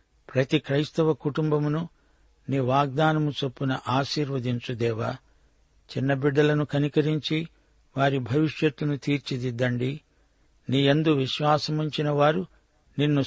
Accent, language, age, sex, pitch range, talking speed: native, Telugu, 60-79, male, 130-150 Hz, 75 wpm